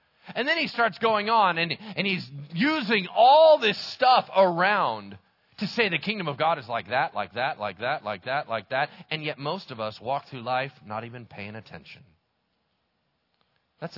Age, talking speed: 40-59, 190 wpm